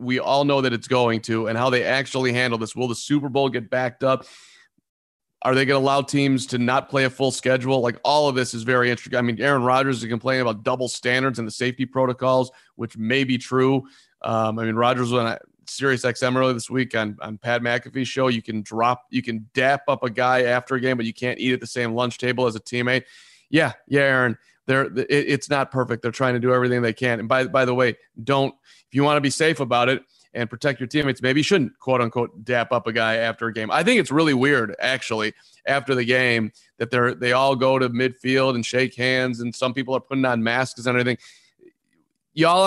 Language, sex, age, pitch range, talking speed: English, male, 30-49, 120-140 Hz, 240 wpm